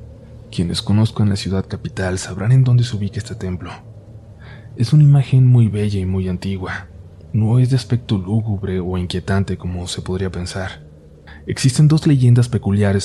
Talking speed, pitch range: 160 wpm, 95-115 Hz